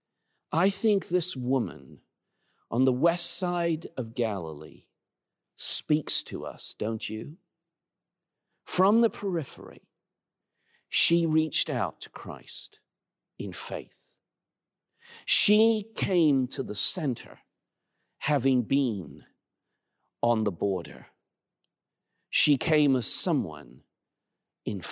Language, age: English, 50-69